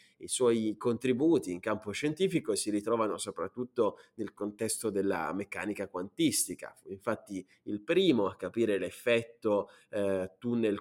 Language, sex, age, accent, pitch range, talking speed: Italian, male, 20-39, native, 110-160 Hz, 115 wpm